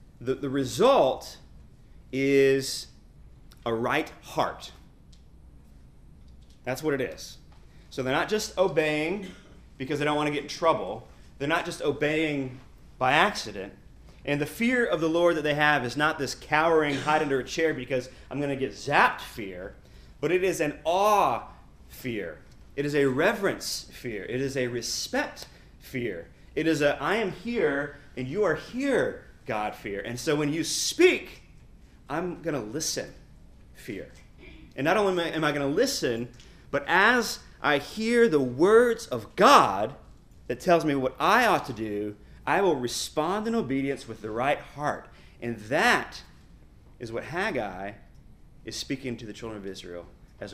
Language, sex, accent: English, male, American